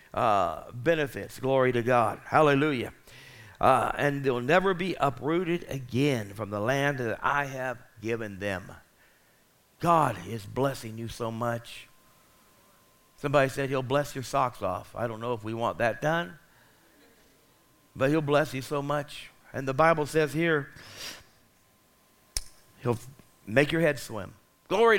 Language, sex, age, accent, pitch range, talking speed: English, male, 60-79, American, 125-160 Hz, 140 wpm